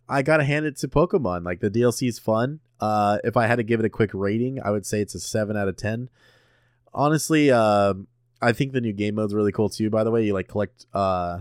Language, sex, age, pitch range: English, male, 20-39, 95-120 Hz